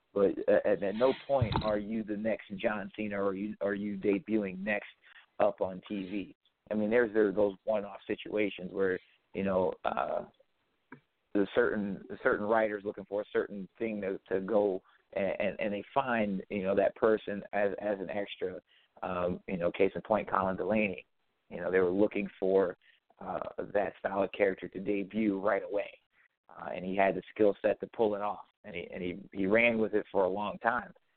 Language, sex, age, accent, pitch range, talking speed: English, male, 40-59, American, 95-105 Hz, 200 wpm